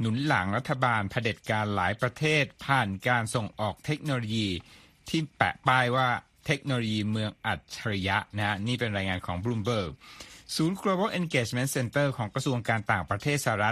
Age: 60-79